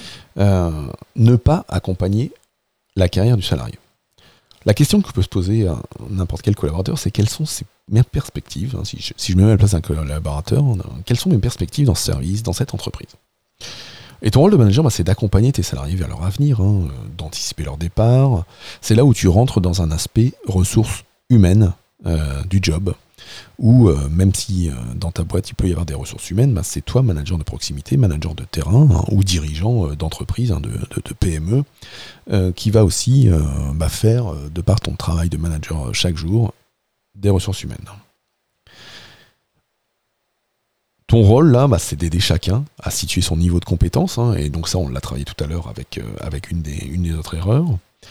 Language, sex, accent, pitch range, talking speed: French, male, French, 85-120 Hz, 195 wpm